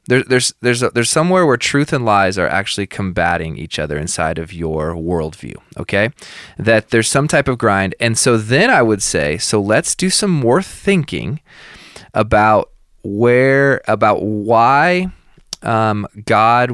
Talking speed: 155 wpm